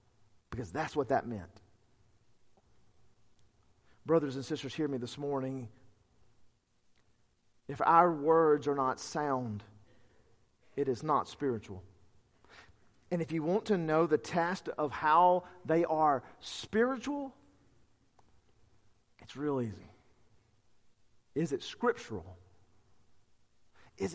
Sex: male